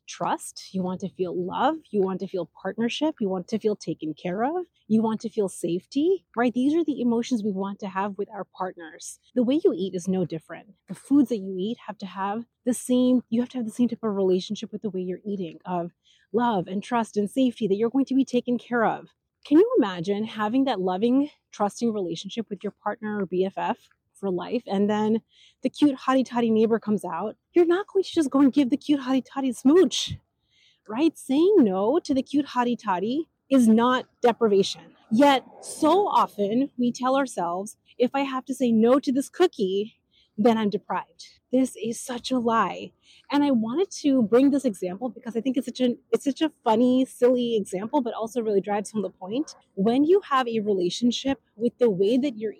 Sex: female